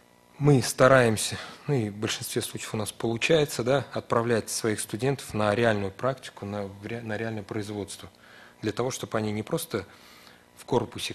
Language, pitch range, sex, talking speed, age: Russian, 100-120 Hz, male, 155 wpm, 30-49